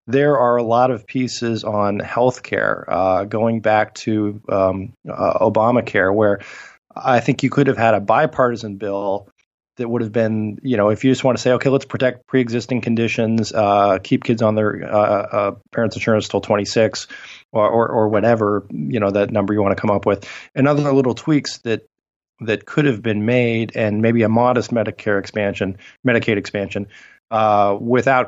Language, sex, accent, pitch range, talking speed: English, male, American, 105-125 Hz, 190 wpm